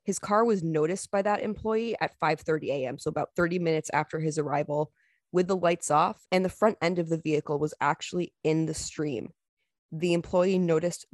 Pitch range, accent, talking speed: 150-175 Hz, American, 195 wpm